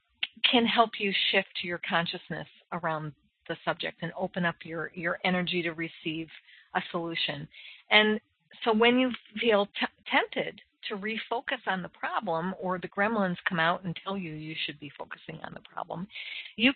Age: 50-69